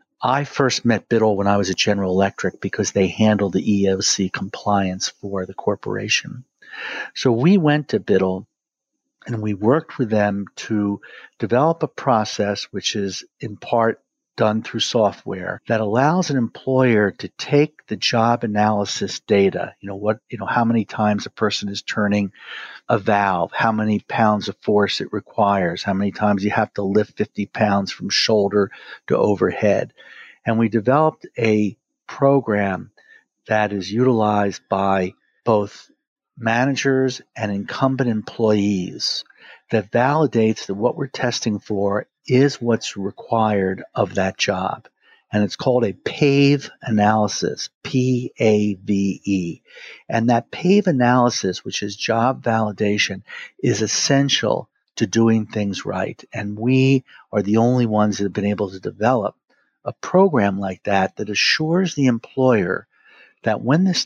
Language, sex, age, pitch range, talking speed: English, male, 50-69, 100-125 Hz, 145 wpm